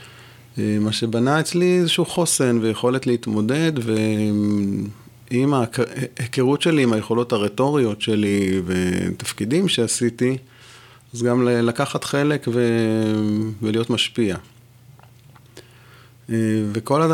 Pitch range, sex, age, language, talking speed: 110-125 Hz, male, 30-49, Hebrew, 80 wpm